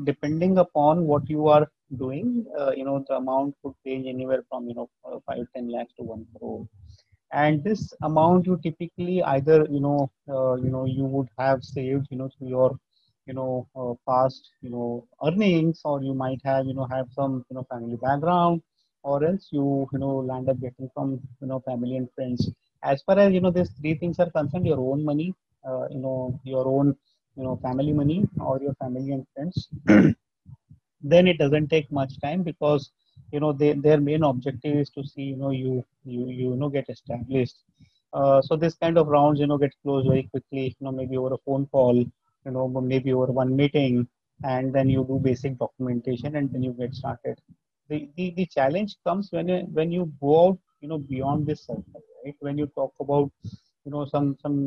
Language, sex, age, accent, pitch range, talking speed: English, male, 30-49, Indian, 130-150 Hz, 200 wpm